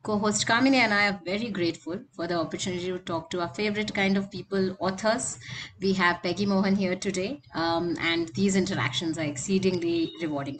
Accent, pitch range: Indian, 165-200 Hz